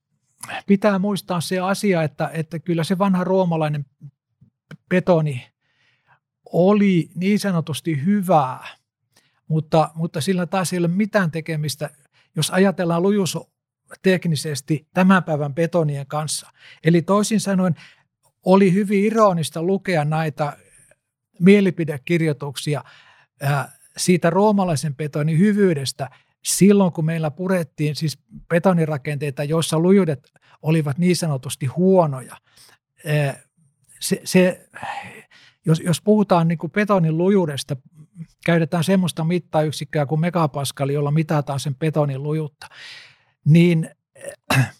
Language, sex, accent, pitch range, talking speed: Finnish, male, native, 150-185 Hz, 100 wpm